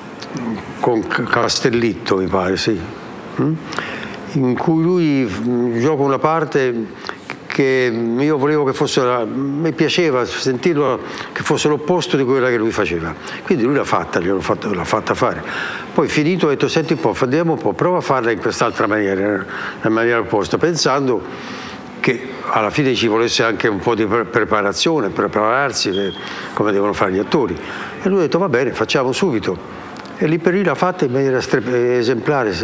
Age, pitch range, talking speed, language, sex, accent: 60-79, 105-140 Hz, 165 wpm, Italian, male, native